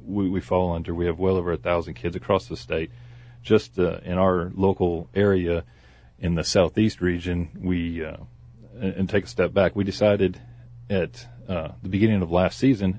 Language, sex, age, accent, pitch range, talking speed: English, male, 40-59, American, 85-100 Hz, 185 wpm